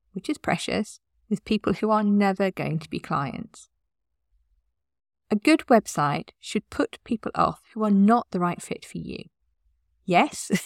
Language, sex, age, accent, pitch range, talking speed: English, female, 40-59, British, 165-235 Hz, 160 wpm